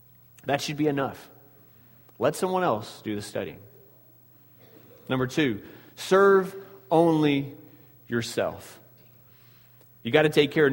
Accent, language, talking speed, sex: American, English, 115 wpm, male